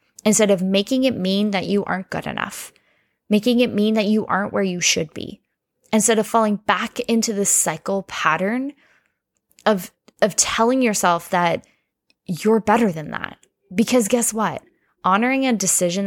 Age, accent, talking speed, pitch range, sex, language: 10-29, American, 160 wpm, 185-240 Hz, female, English